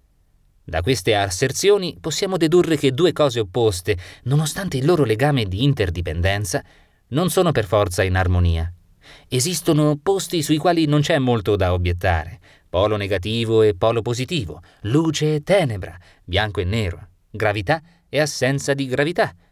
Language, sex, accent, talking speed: Italian, male, native, 140 wpm